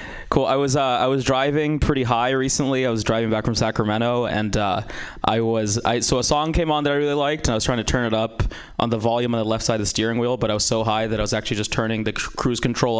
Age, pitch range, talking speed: 20-39, 115-150 Hz, 295 wpm